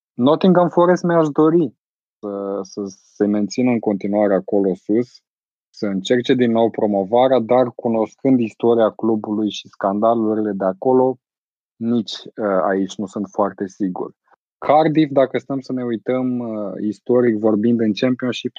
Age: 20-39